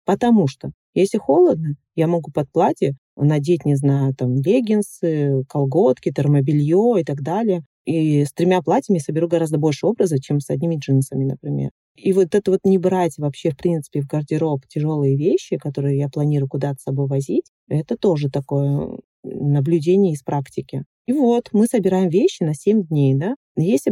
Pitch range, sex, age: 140-185 Hz, female, 30-49